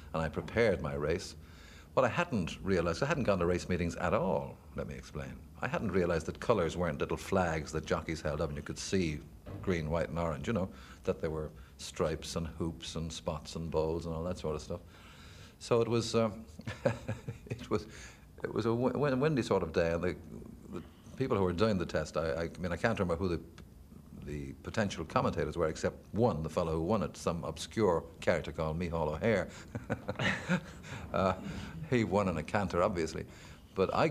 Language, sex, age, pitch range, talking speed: English, male, 50-69, 80-100 Hz, 195 wpm